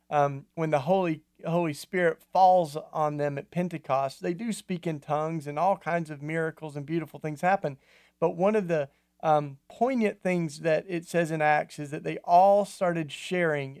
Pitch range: 150-175 Hz